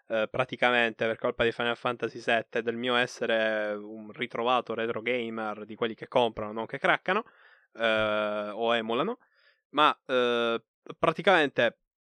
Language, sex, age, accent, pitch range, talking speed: Italian, male, 20-39, native, 115-175 Hz, 140 wpm